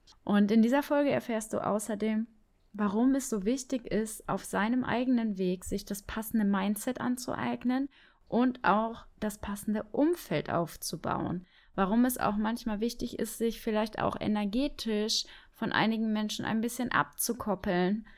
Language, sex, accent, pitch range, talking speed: German, female, German, 180-225 Hz, 140 wpm